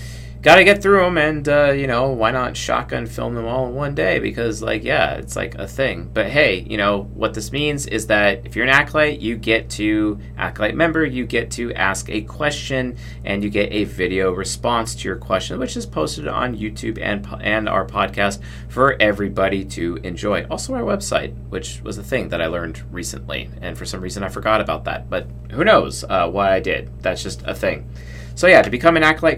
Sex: male